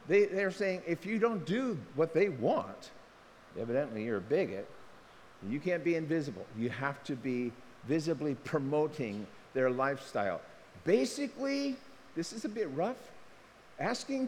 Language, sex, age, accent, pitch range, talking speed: English, male, 50-69, American, 140-205 Hz, 135 wpm